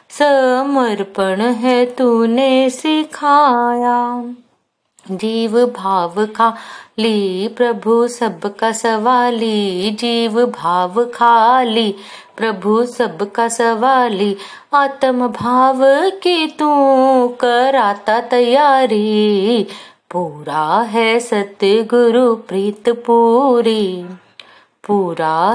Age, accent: 30-49, native